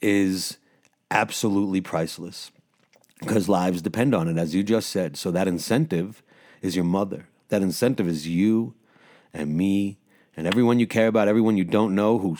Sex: male